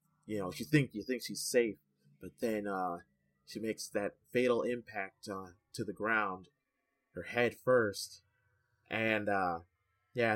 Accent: American